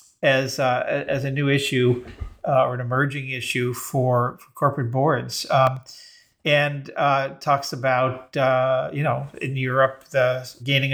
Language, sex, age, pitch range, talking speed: English, male, 50-69, 125-140 Hz, 150 wpm